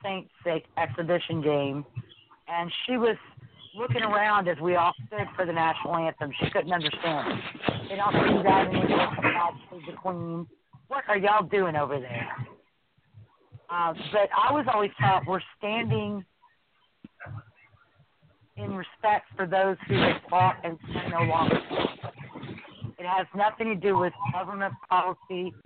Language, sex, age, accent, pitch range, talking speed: English, female, 50-69, American, 140-195 Hz, 140 wpm